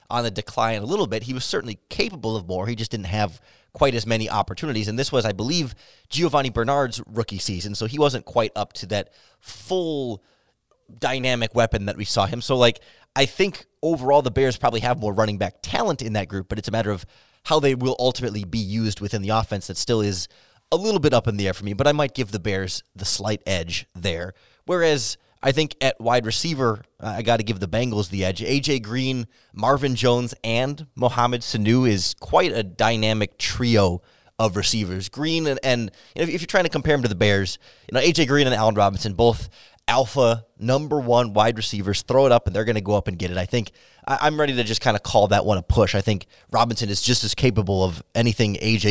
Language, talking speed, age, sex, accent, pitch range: English, 225 wpm, 30-49, male, American, 105-130 Hz